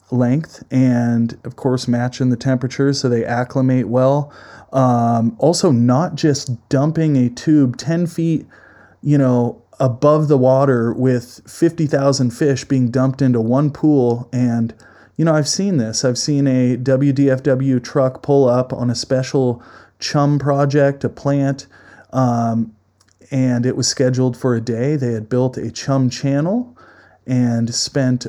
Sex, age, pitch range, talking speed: male, 30-49, 120-145 Hz, 145 wpm